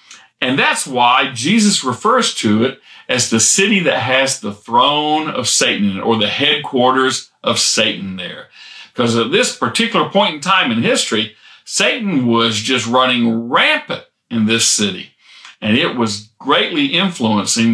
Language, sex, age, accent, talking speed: English, male, 50-69, American, 150 wpm